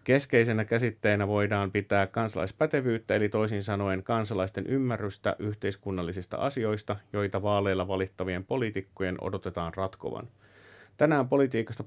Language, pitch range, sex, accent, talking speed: Finnish, 95-115 Hz, male, native, 100 wpm